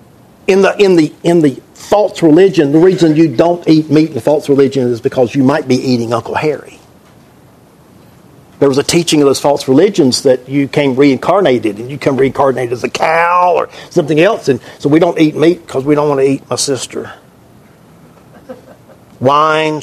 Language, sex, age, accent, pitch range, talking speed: English, male, 50-69, American, 140-175 Hz, 190 wpm